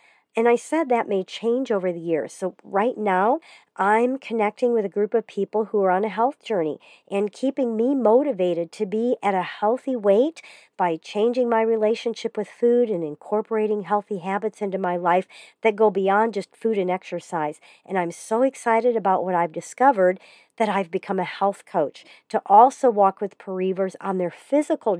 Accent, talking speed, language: American, 185 wpm, English